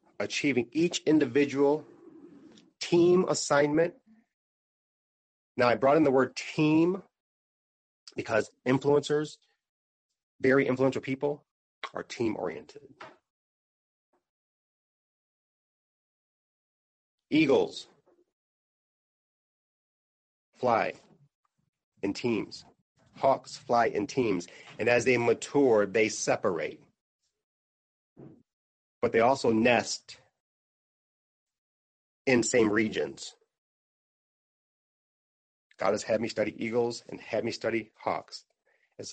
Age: 30-49